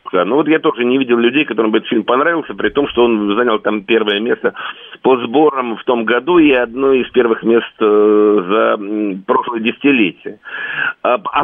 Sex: male